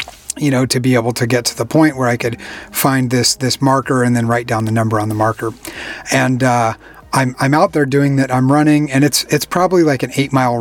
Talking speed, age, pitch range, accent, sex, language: 250 wpm, 30-49, 120-140 Hz, American, male, English